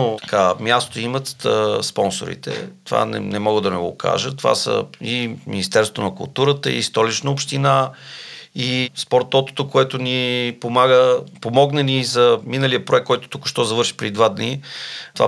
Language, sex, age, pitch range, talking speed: Bulgarian, male, 40-59, 115-140 Hz, 155 wpm